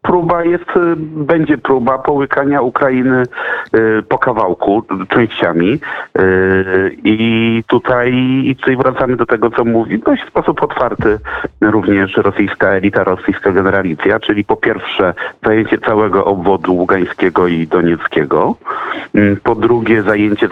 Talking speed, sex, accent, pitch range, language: 115 wpm, male, native, 100-130 Hz, Polish